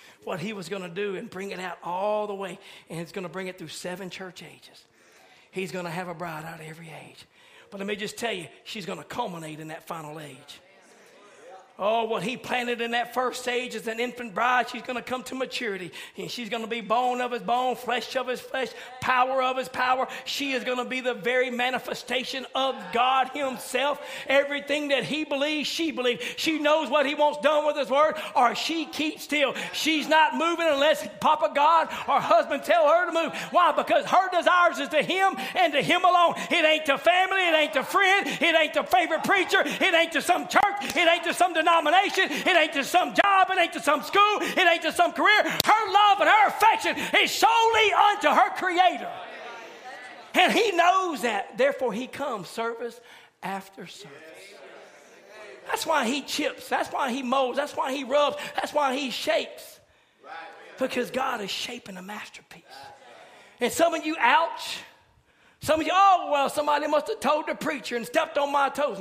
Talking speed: 205 wpm